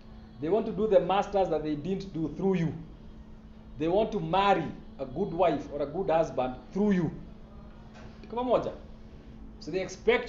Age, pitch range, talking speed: 40-59, 150-200 Hz, 165 wpm